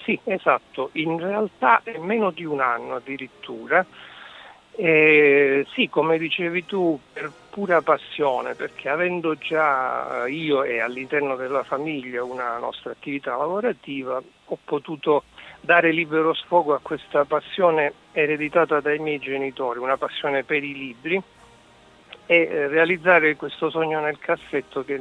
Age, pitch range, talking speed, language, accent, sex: 50-69, 140-170 Hz, 130 wpm, Italian, native, male